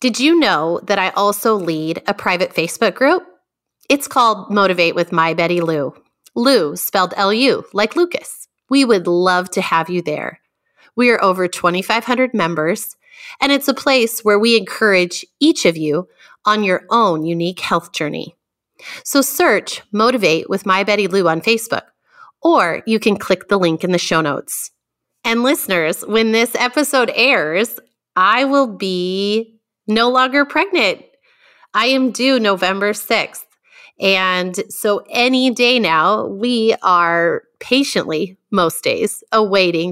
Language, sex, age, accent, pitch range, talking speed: English, female, 30-49, American, 175-245 Hz, 150 wpm